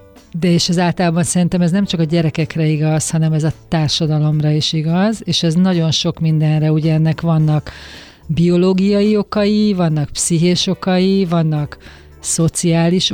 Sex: female